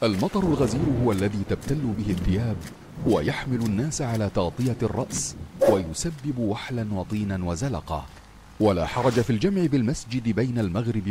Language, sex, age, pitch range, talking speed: Arabic, male, 40-59, 95-130 Hz, 125 wpm